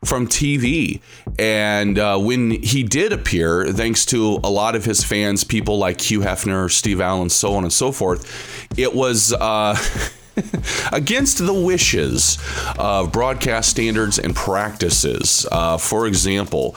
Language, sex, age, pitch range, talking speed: English, male, 30-49, 95-140 Hz, 140 wpm